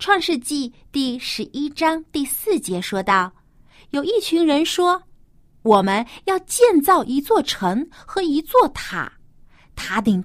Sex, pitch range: female, 220-330 Hz